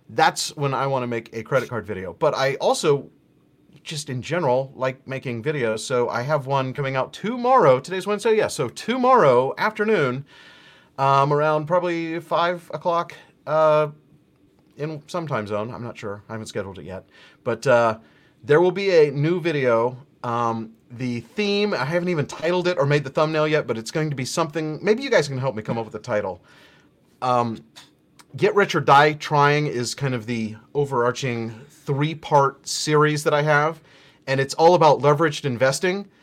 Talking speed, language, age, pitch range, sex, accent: 180 wpm, English, 30-49, 120-155 Hz, male, American